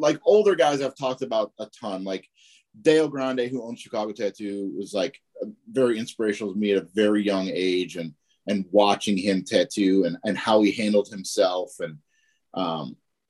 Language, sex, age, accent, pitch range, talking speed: English, male, 30-49, American, 100-130 Hz, 175 wpm